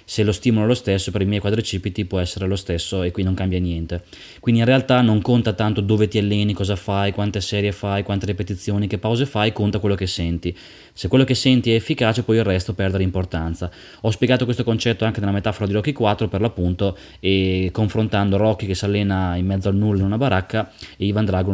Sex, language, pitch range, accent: male, Italian, 95-110 Hz, native